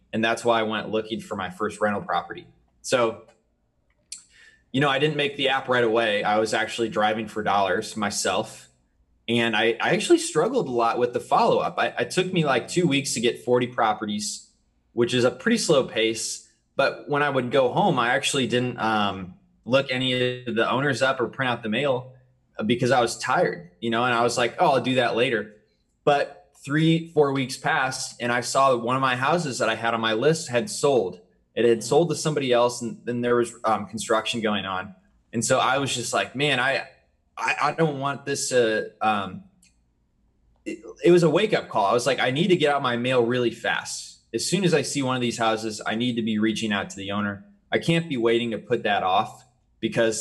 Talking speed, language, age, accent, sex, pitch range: 220 wpm, English, 20-39, American, male, 110-135 Hz